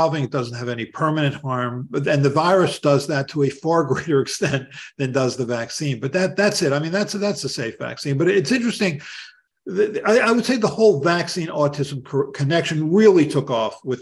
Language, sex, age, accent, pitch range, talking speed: English, male, 50-69, American, 130-170 Hz, 190 wpm